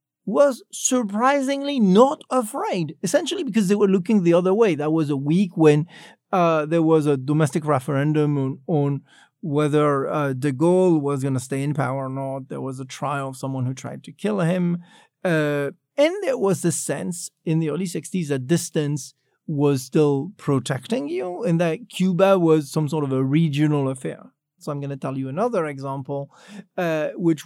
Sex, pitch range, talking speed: male, 145-190 Hz, 185 wpm